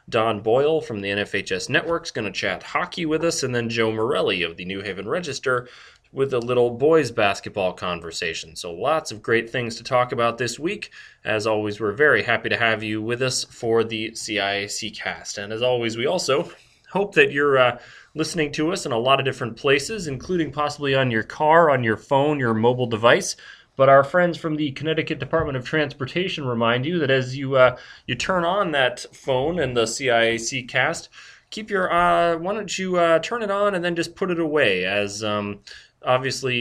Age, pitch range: 30-49, 115-155 Hz